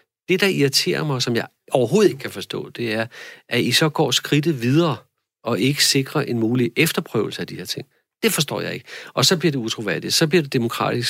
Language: Danish